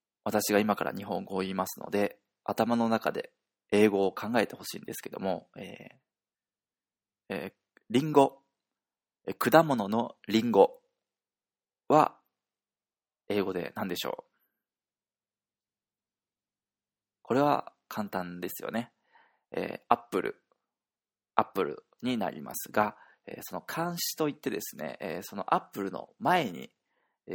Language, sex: Japanese, male